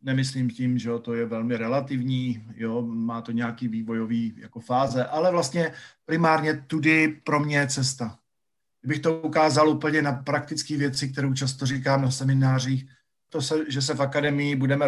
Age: 40-59